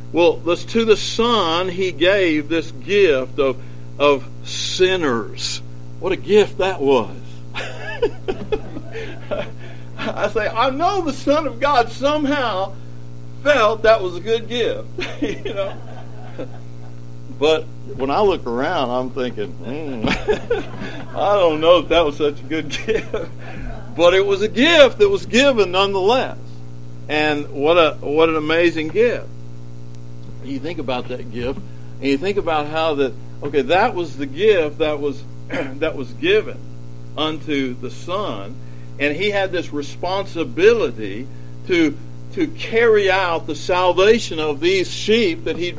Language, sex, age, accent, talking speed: English, male, 60-79, American, 140 wpm